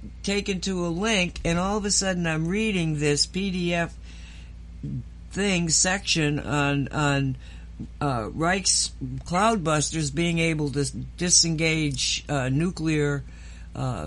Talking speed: 115 wpm